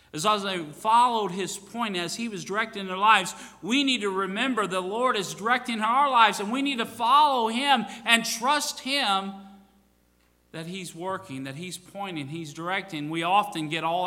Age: 40-59